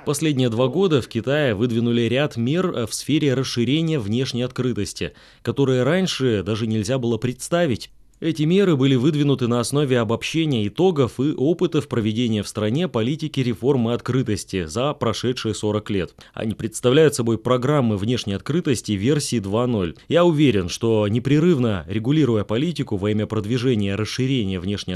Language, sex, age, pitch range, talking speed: Russian, male, 20-39, 110-140 Hz, 140 wpm